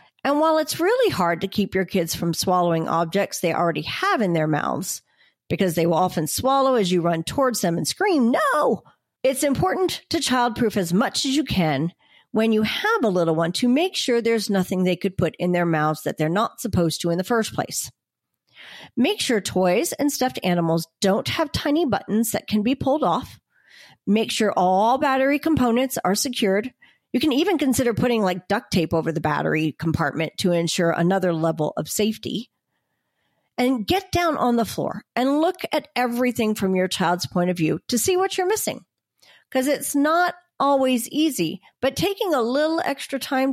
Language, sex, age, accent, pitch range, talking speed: English, female, 40-59, American, 180-275 Hz, 190 wpm